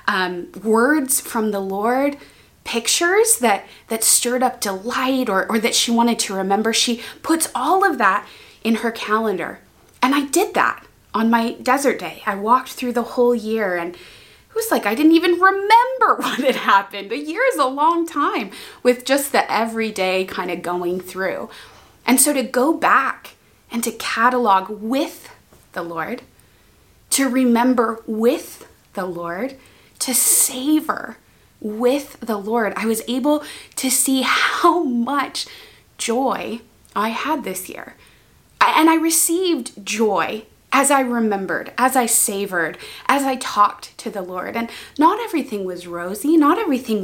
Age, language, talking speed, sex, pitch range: 20-39, English, 155 wpm, female, 215-280 Hz